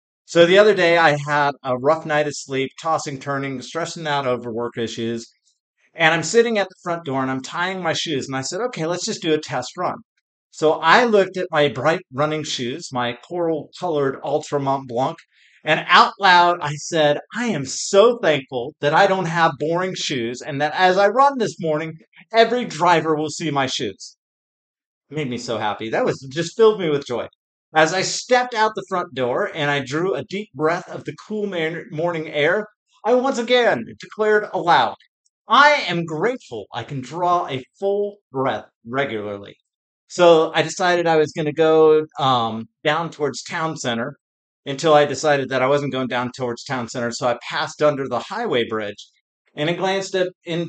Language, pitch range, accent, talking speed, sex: English, 135-180 Hz, American, 190 wpm, male